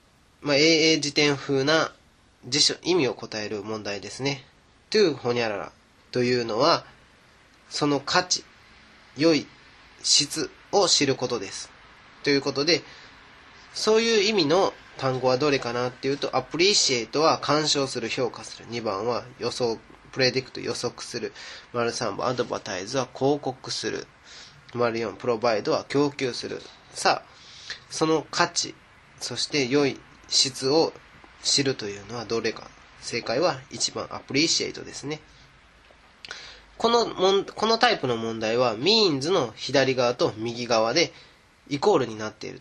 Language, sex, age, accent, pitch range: Japanese, male, 20-39, native, 120-160 Hz